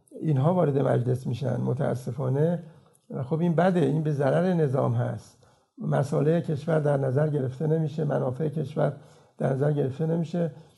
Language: Persian